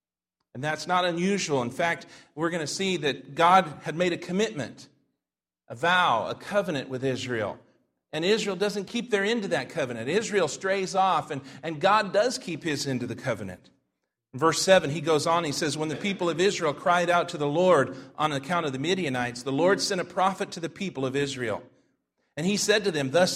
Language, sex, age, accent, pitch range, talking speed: English, male, 40-59, American, 140-190 Hz, 215 wpm